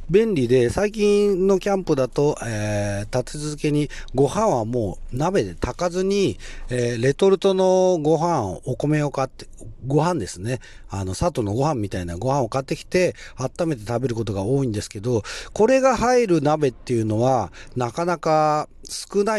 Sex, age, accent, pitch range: male, 40-59, native, 110-160 Hz